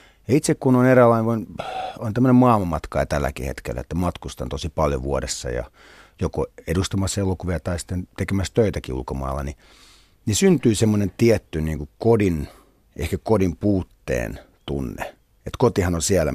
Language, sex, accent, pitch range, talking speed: Finnish, male, native, 70-100 Hz, 140 wpm